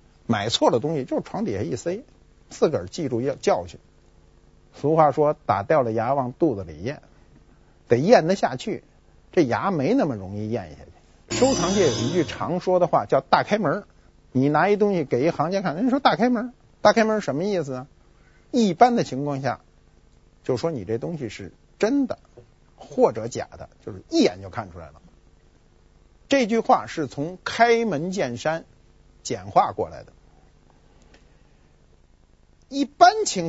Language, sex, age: Chinese, male, 50-69